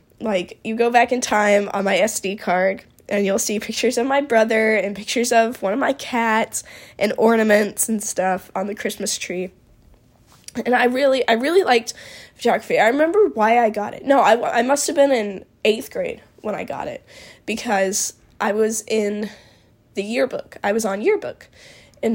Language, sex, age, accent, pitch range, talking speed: English, female, 10-29, American, 205-250 Hz, 185 wpm